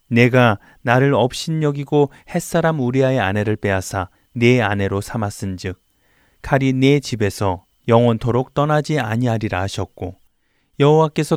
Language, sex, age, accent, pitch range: Korean, male, 30-49, native, 105-145 Hz